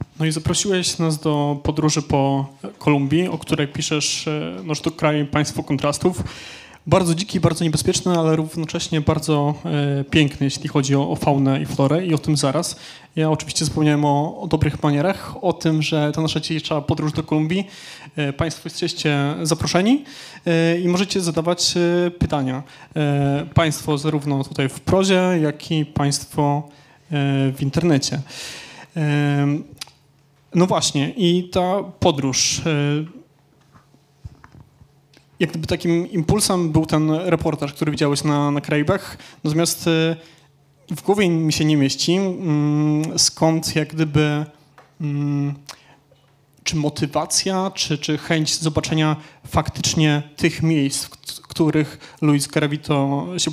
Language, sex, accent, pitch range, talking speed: Polish, male, native, 145-165 Hz, 125 wpm